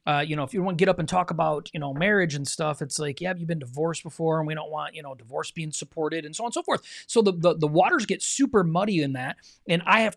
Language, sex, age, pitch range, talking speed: English, male, 30-49, 145-200 Hz, 305 wpm